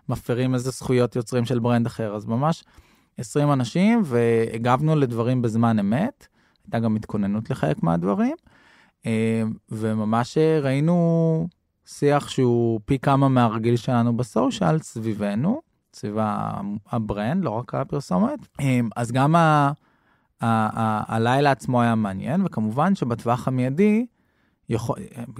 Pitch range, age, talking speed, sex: 110-135 Hz, 20-39, 120 wpm, male